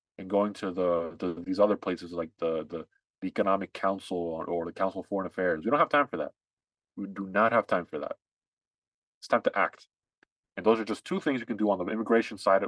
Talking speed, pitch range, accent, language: 240 wpm, 90-125 Hz, American, English